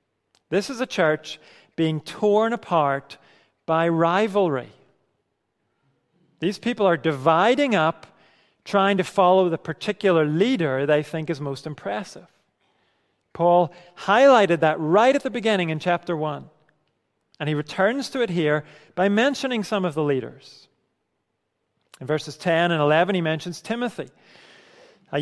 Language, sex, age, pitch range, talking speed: English, male, 40-59, 150-200 Hz, 135 wpm